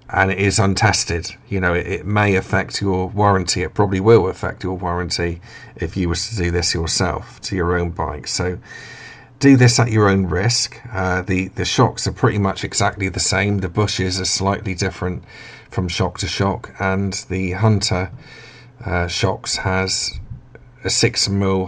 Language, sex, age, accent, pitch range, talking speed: English, male, 50-69, British, 95-115 Hz, 175 wpm